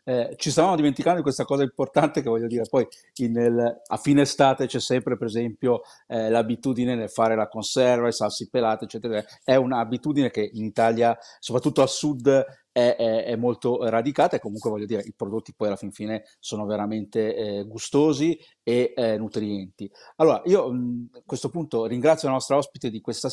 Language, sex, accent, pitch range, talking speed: Italian, male, native, 110-135 Hz, 185 wpm